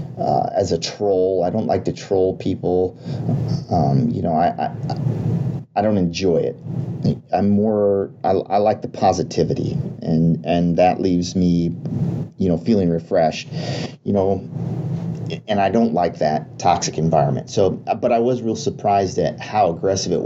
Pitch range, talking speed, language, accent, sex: 90-140 Hz, 160 wpm, English, American, male